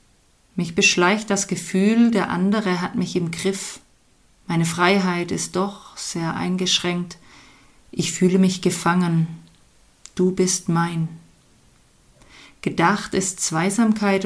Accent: German